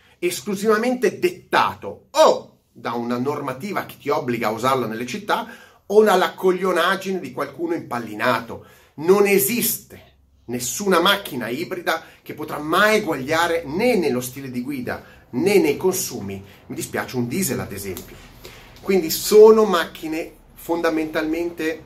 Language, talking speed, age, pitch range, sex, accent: Italian, 125 wpm, 30-49, 120-185 Hz, male, native